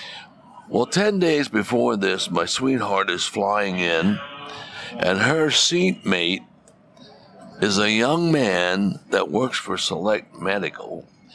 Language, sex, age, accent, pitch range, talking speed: English, male, 60-79, American, 90-140 Hz, 115 wpm